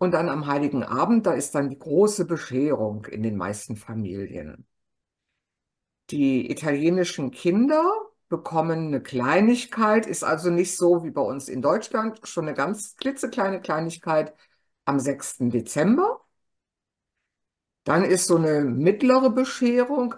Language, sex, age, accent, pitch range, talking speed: German, female, 50-69, German, 155-225 Hz, 130 wpm